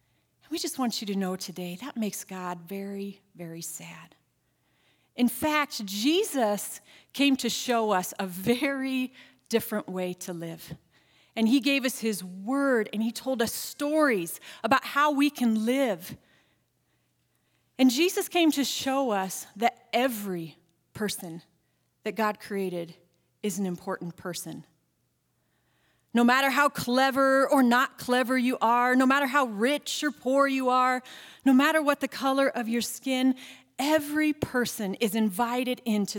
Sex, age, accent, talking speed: female, 40-59, American, 145 wpm